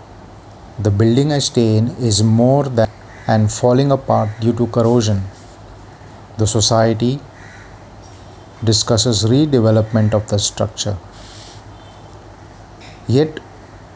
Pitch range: 100-120 Hz